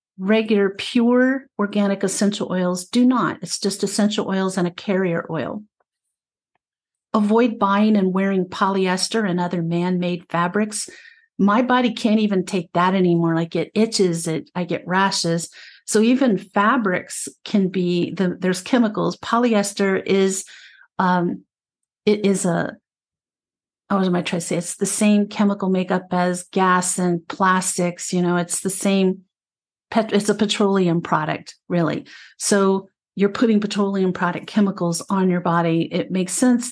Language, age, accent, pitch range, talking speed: English, 50-69, American, 175-210 Hz, 150 wpm